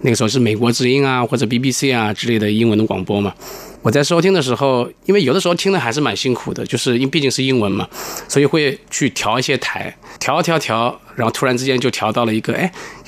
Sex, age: male, 20-39